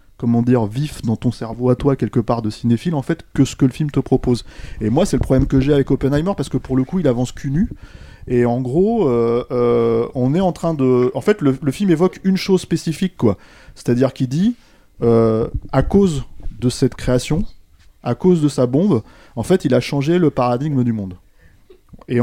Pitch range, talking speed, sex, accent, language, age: 115-150 Hz, 230 wpm, male, French, French, 20-39